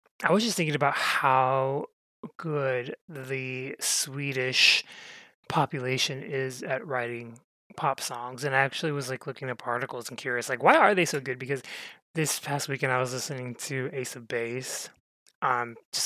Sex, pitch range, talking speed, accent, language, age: male, 130-155 Hz, 165 wpm, American, English, 20-39